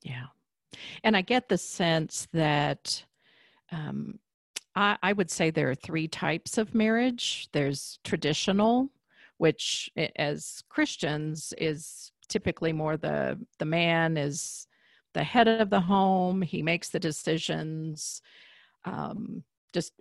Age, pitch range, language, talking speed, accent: 50-69, 160-195 Hz, English, 125 wpm, American